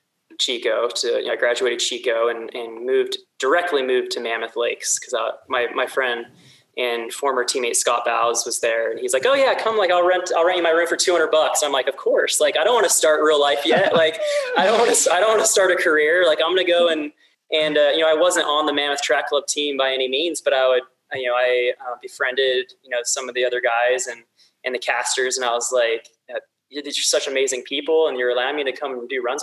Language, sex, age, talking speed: English, male, 20-39, 255 wpm